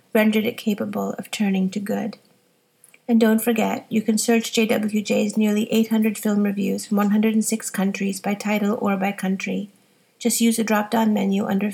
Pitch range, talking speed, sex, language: 205-230 Hz, 165 wpm, female, English